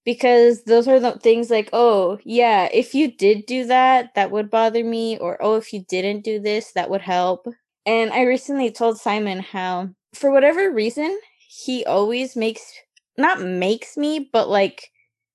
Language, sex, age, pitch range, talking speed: English, female, 10-29, 195-245 Hz, 170 wpm